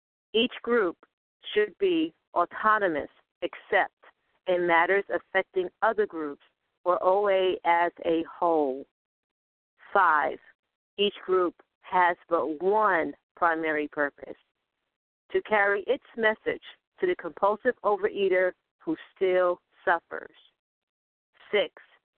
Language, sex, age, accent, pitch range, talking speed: English, female, 50-69, American, 175-225 Hz, 95 wpm